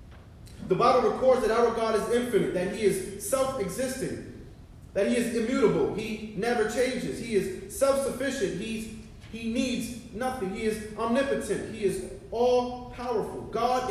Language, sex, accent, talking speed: English, male, American, 140 wpm